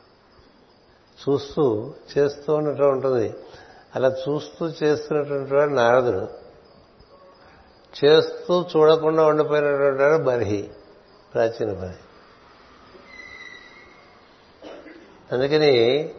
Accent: native